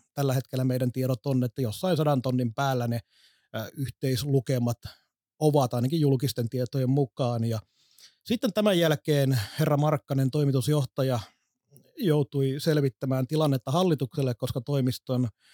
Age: 30-49